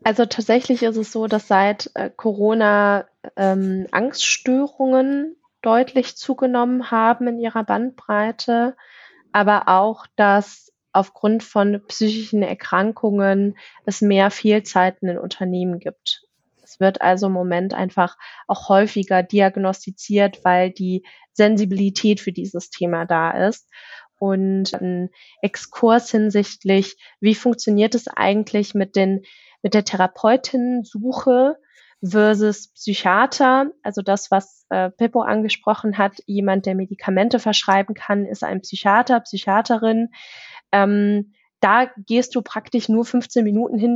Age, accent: 20-39, German